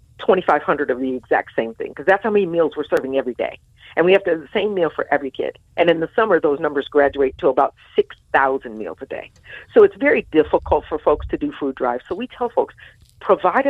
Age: 50-69